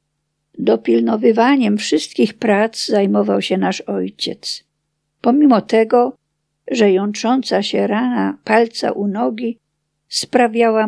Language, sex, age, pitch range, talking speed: Polish, female, 50-69, 150-230 Hz, 95 wpm